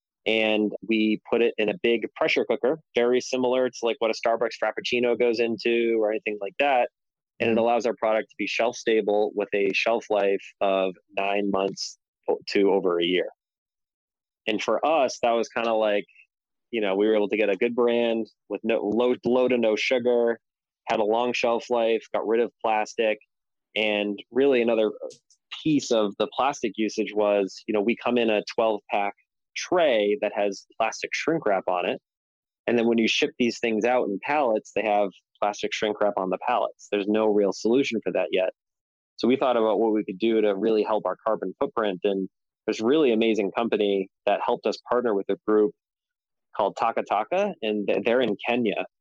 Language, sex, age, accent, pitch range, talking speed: English, male, 20-39, American, 105-120 Hz, 195 wpm